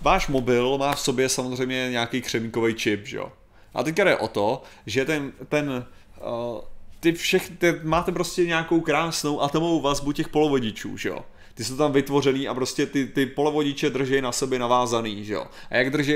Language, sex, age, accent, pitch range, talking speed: Czech, male, 30-49, native, 120-150 Hz, 180 wpm